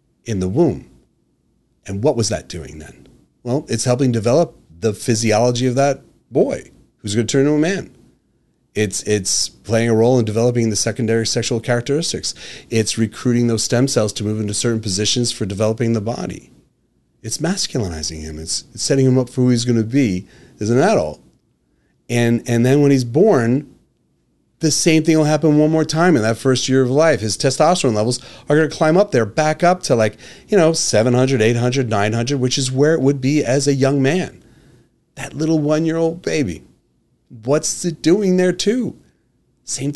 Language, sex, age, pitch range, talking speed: English, male, 30-49, 115-145 Hz, 190 wpm